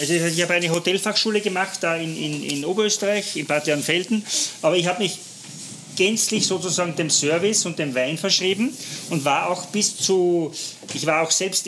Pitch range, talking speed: 155-190 Hz, 180 wpm